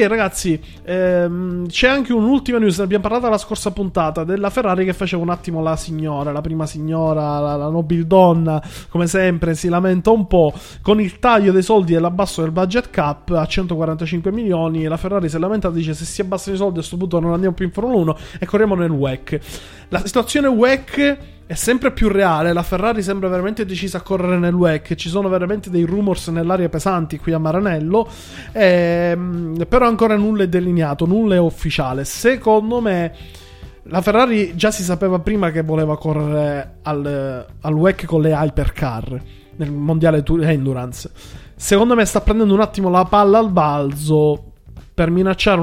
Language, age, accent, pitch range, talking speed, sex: Italian, 20-39, native, 160-200 Hz, 180 wpm, male